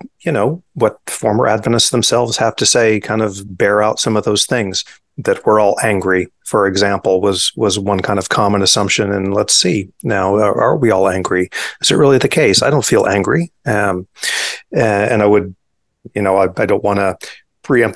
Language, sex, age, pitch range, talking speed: English, male, 40-59, 100-115 Hz, 200 wpm